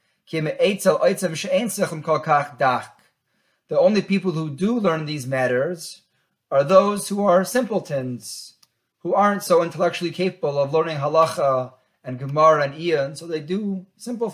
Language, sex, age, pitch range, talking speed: English, male, 30-49, 140-180 Hz, 125 wpm